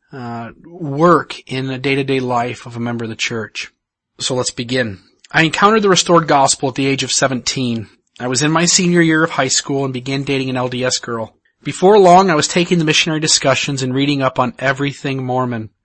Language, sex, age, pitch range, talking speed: English, male, 40-59, 130-160 Hz, 205 wpm